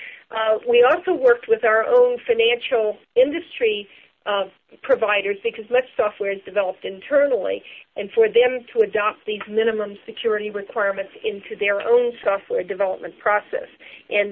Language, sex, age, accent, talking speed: English, female, 50-69, American, 140 wpm